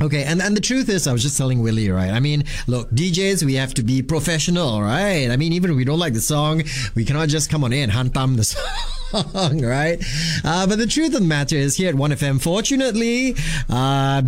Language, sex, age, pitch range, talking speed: English, male, 20-39, 120-175 Hz, 225 wpm